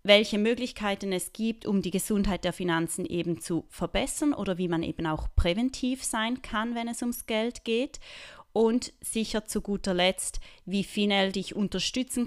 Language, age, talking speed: German, 20-39, 165 wpm